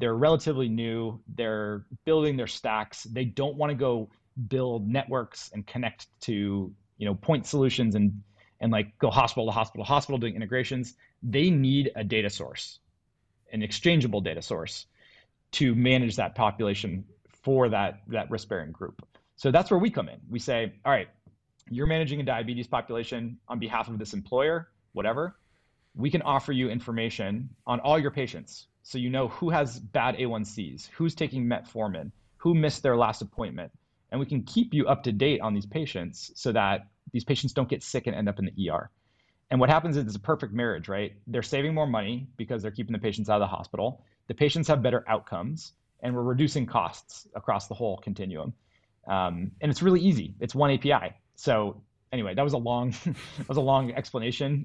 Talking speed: 185 wpm